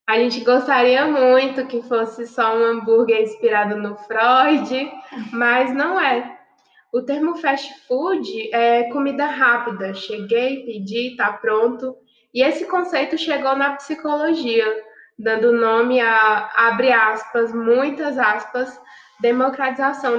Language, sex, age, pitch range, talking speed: Portuguese, female, 20-39, 225-270 Hz, 120 wpm